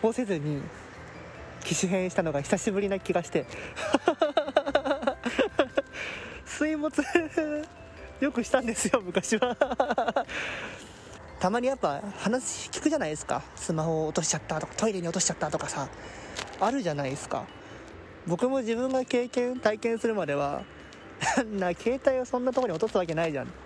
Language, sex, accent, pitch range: Japanese, male, native, 150-240 Hz